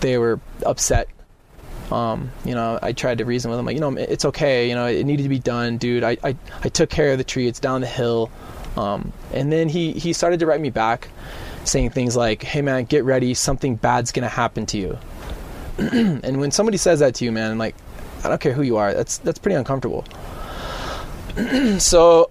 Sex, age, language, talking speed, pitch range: male, 20-39, English, 220 wpm, 115-145 Hz